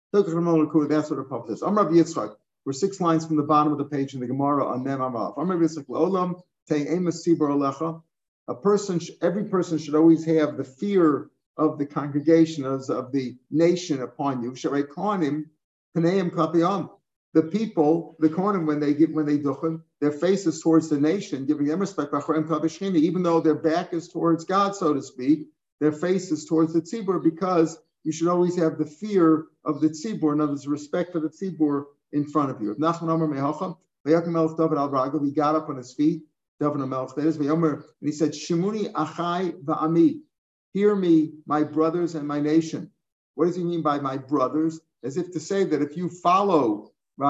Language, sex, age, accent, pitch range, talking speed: English, male, 50-69, American, 150-170 Hz, 155 wpm